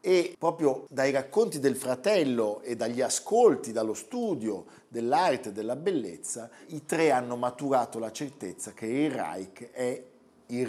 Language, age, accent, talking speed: Italian, 50-69, native, 145 wpm